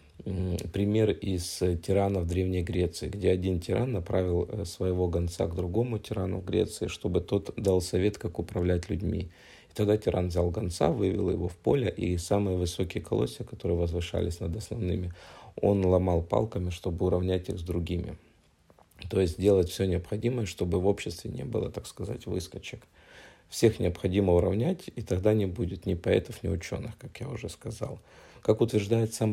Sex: male